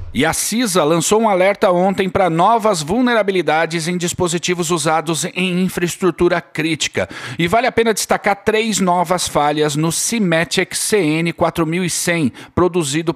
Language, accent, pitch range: Portuguese, Brazilian, 165-215 Hz